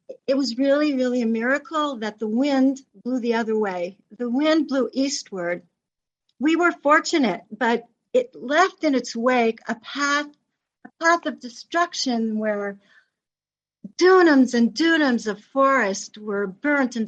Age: 50-69